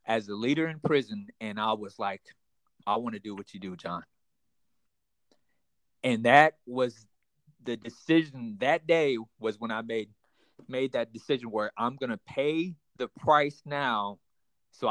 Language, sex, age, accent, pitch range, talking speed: English, male, 30-49, American, 125-165 Hz, 160 wpm